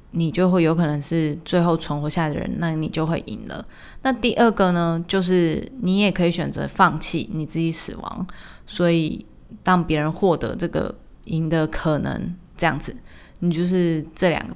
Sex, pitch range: female, 160-200 Hz